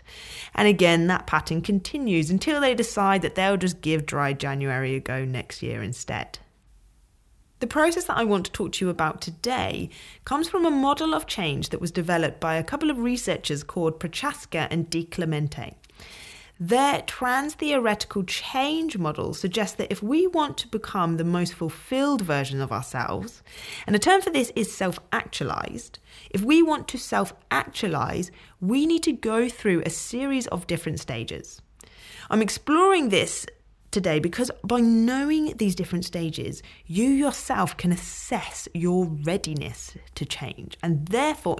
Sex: female